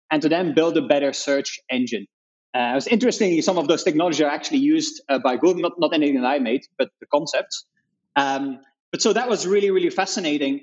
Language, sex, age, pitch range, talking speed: English, male, 20-39, 140-195 Hz, 220 wpm